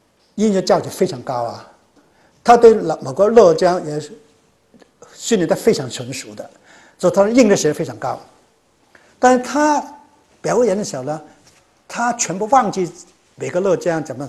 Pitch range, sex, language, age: 145-215 Hz, male, Chinese, 60-79